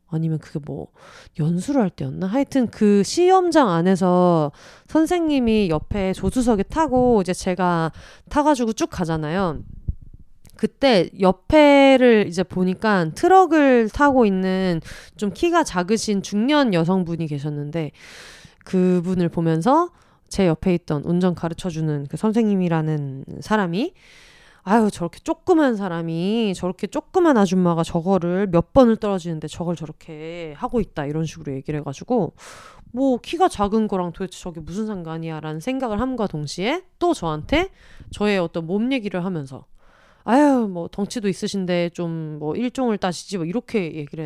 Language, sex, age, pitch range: Korean, female, 30-49, 165-255 Hz